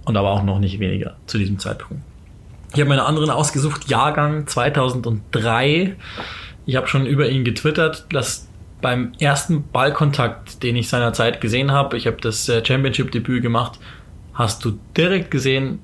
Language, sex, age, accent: German, male, 20-39, German